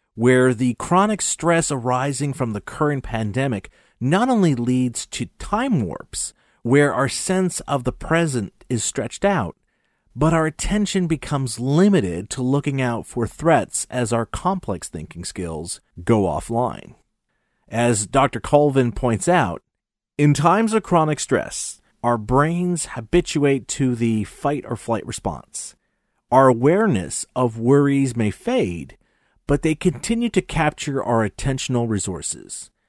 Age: 40-59